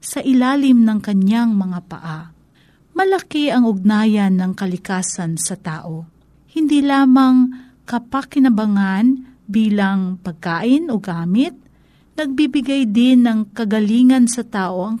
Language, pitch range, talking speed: Filipino, 180-255 Hz, 110 wpm